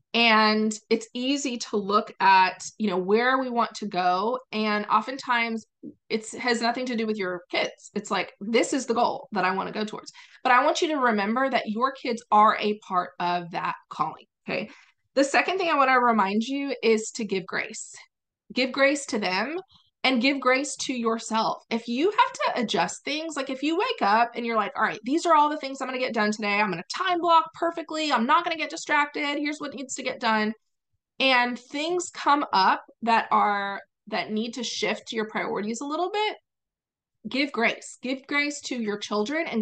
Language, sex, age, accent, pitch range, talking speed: English, female, 20-39, American, 215-280 Hz, 210 wpm